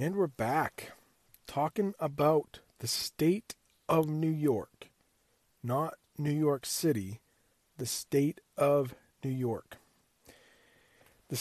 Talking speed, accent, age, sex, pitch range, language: 105 wpm, American, 40-59, male, 130-160 Hz, English